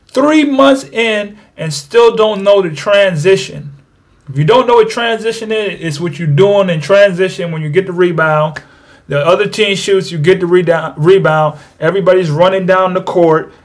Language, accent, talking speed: English, American, 185 wpm